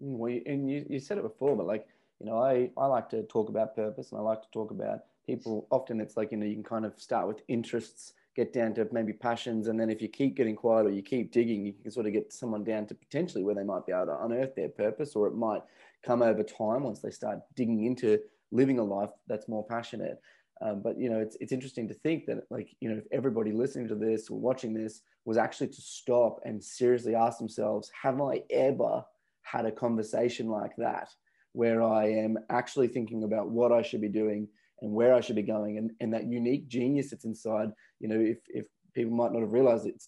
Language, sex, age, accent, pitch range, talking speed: English, male, 20-39, Australian, 110-125 Hz, 240 wpm